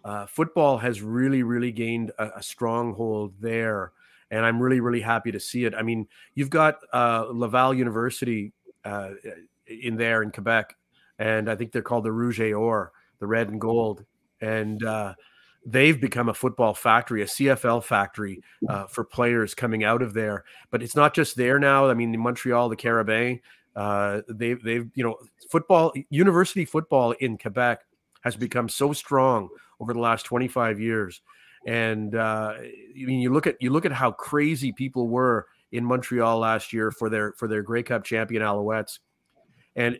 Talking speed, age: 175 wpm, 30-49